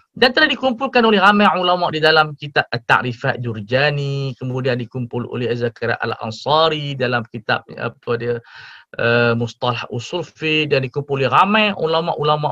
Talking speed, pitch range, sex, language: 135 wpm, 130-205 Hz, male, Malay